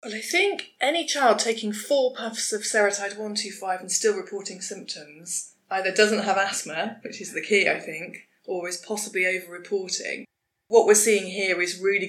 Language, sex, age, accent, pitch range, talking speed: English, female, 20-39, British, 180-225 Hz, 175 wpm